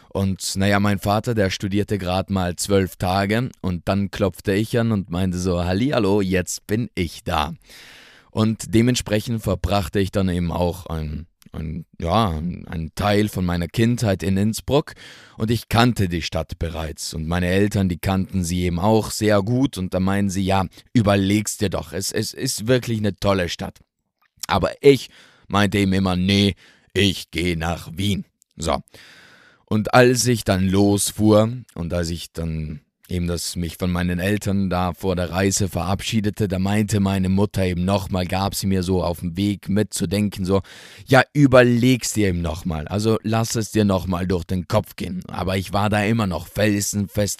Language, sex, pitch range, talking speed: German, male, 90-105 Hz, 175 wpm